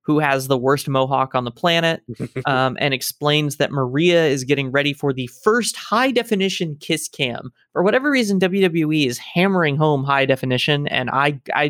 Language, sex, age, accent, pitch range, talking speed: English, male, 20-39, American, 135-195 Hz, 180 wpm